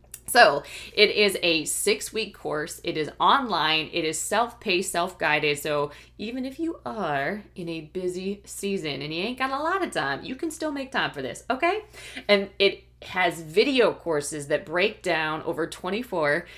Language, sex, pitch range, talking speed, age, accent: English, female, 155-210 Hz, 175 wpm, 20-39, American